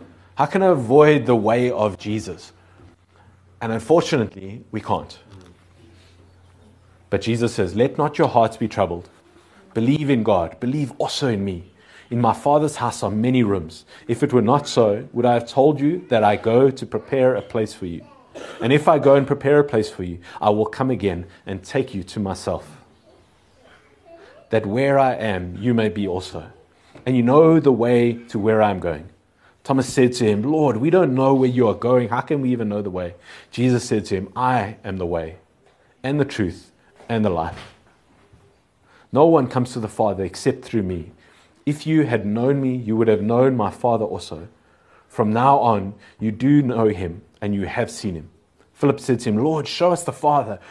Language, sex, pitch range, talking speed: English, male, 100-130 Hz, 195 wpm